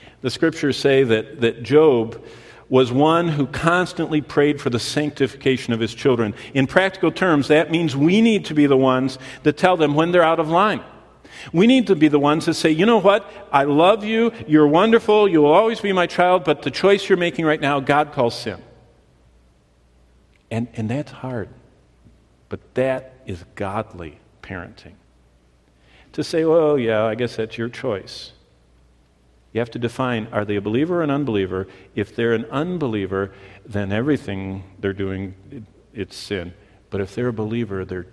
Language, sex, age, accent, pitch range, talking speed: English, male, 50-69, American, 100-150 Hz, 180 wpm